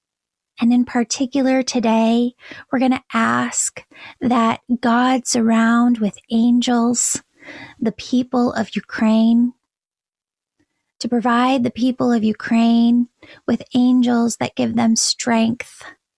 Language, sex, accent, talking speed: English, female, American, 110 wpm